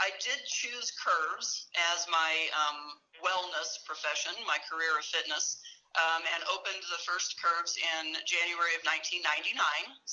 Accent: American